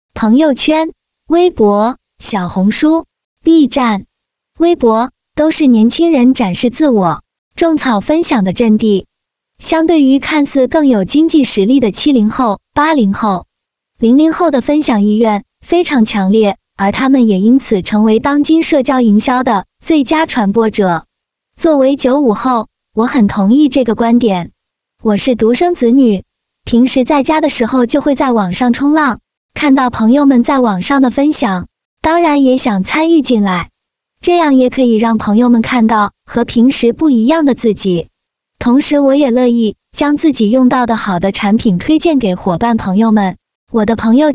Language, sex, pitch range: Chinese, female, 220-290 Hz